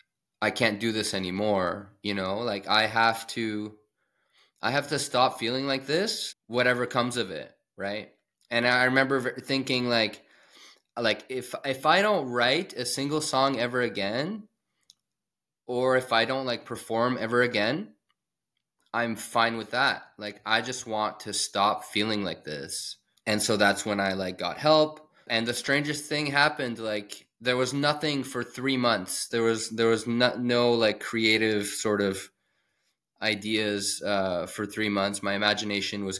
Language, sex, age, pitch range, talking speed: English, male, 20-39, 100-125 Hz, 160 wpm